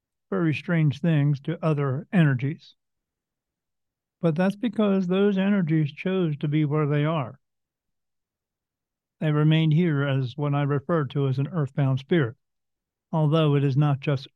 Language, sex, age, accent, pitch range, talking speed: English, male, 50-69, American, 135-165 Hz, 140 wpm